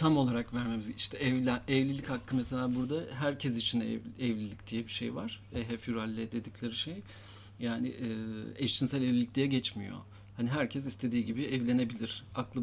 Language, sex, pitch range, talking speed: German, male, 110-130 Hz, 150 wpm